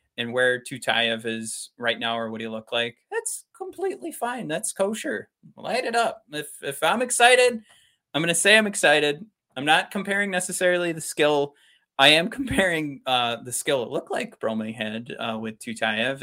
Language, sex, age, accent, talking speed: English, male, 20-39, American, 180 wpm